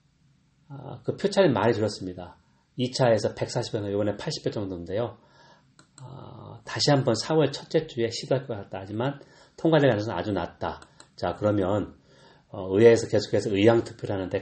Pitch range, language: 95-135 Hz, Korean